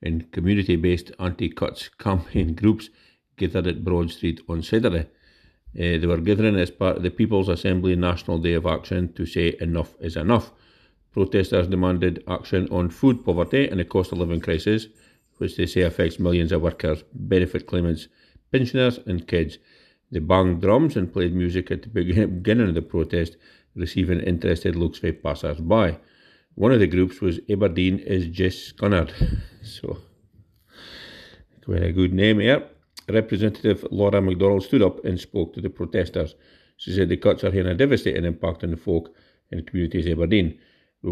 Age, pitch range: 50-69, 85-100 Hz